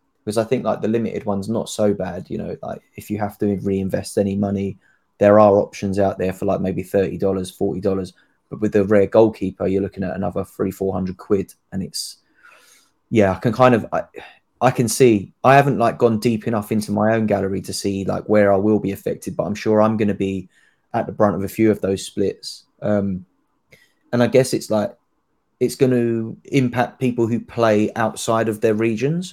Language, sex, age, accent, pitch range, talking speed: English, male, 20-39, British, 100-115 Hz, 215 wpm